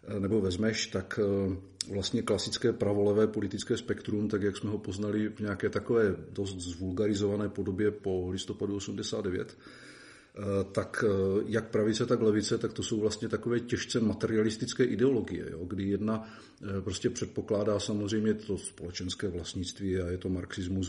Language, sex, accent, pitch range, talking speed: Czech, male, native, 100-120 Hz, 135 wpm